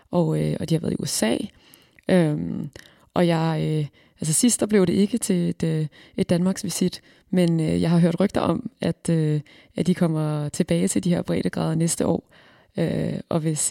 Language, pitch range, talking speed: Danish, 160-190 Hz, 195 wpm